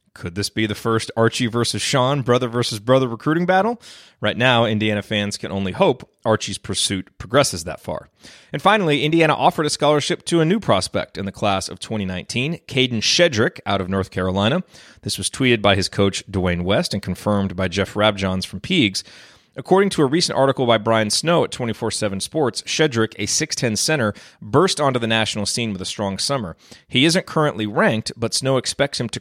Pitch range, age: 100-135 Hz, 30-49